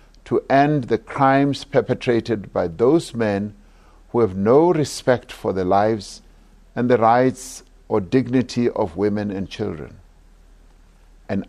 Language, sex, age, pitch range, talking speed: English, male, 60-79, 95-130 Hz, 130 wpm